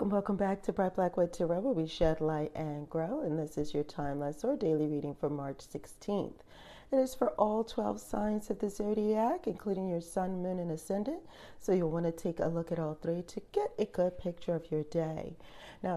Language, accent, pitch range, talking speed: English, American, 160-200 Hz, 220 wpm